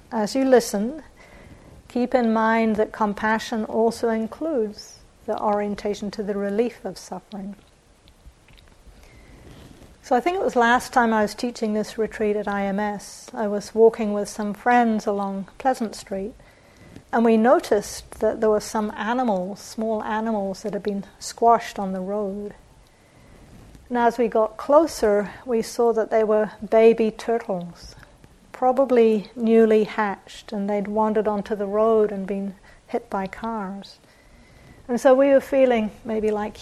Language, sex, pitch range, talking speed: English, female, 205-235 Hz, 145 wpm